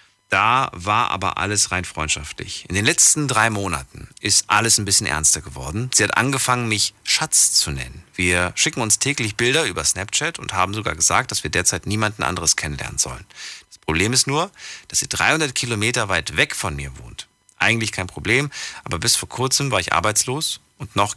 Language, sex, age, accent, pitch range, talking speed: German, male, 40-59, German, 95-130 Hz, 190 wpm